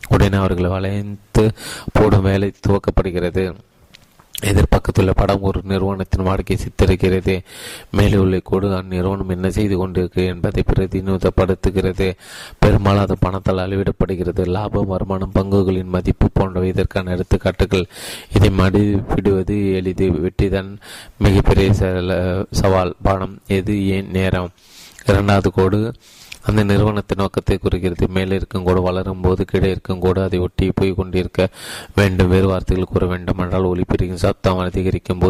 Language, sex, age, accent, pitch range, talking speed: Tamil, male, 30-49, native, 95-100 Hz, 110 wpm